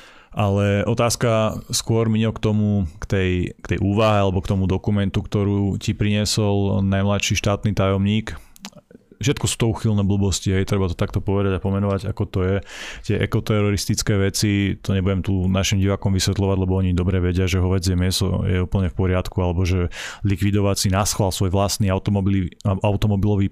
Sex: male